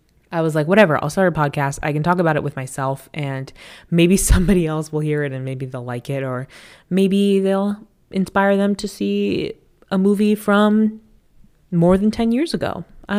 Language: English